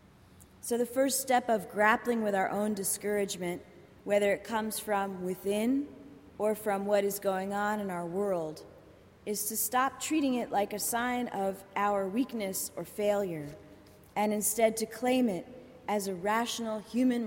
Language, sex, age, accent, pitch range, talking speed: English, female, 30-49, American, 180-230 Hz, 160 wpm